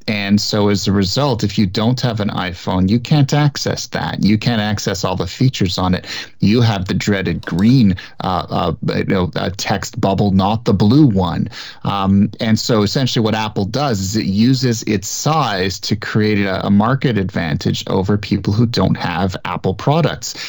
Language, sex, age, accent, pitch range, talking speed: English, male, 30-49, American, 100-120 Hz, 185 wpm